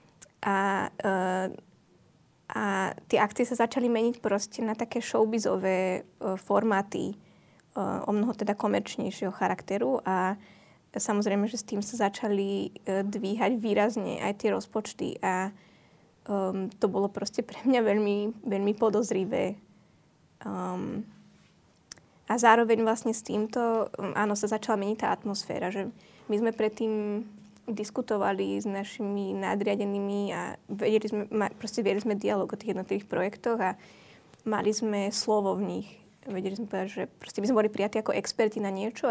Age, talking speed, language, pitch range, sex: 20-39, 130 wpm, Slovak, 200-220 Hz, female